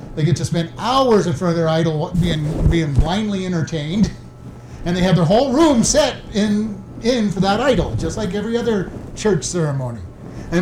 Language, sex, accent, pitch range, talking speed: English, male, American, 150-195 Hz, 185 wpm